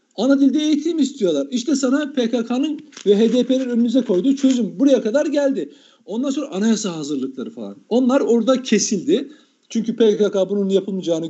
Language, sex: Turkish, male